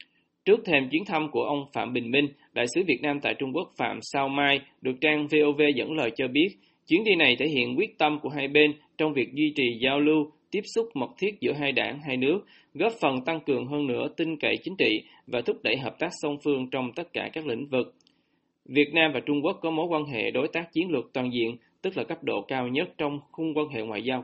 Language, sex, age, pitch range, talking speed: Vietnamese, male, 20-39, 140-160 Hz, 250 wpm